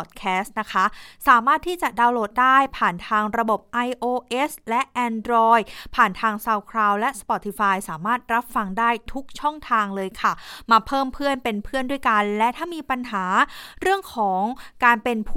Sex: female